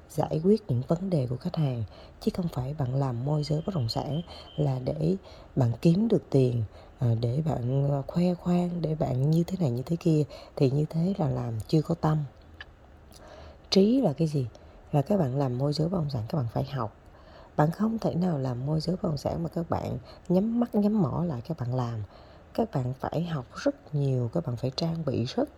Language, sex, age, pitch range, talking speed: Vietnamese, female, 20-39, 125-170 Hz, 220 wpm